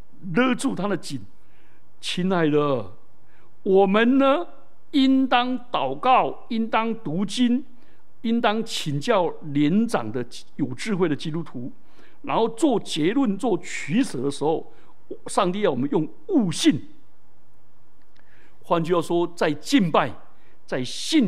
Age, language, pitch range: 60-79, Chinese, 155-235 Hz